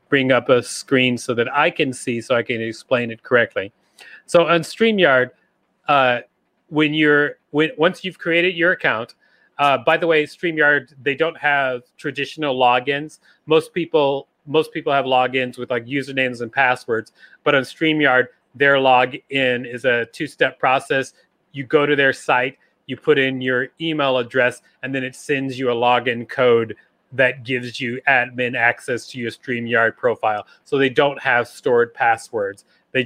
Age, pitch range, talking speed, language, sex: 30-49, 125-155 Hz, 165 wpm, English, male